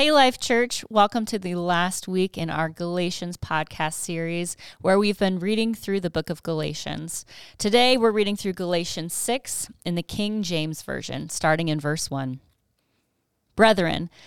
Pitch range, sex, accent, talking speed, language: 155-200 Hz, female, American, 160 wpm, English